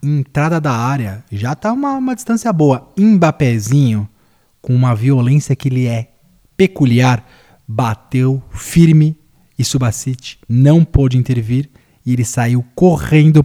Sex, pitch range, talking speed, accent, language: male, 120-185 Hz, 125 wpm, Brazilian, Portuguese